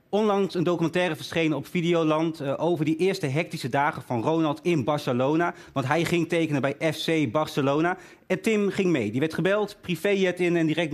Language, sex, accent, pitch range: Dutch, male, Dutch, 140-175 Hz